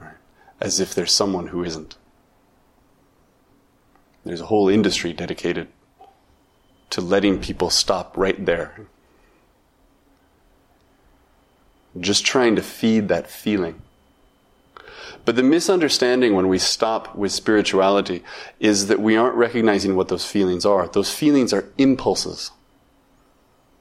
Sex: male